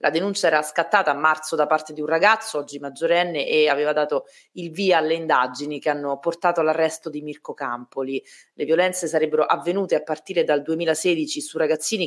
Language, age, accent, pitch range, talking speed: Italian, 30-49, native, 150-175 Hz, 185 wpm